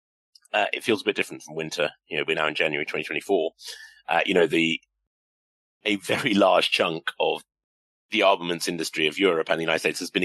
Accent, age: British, 30-49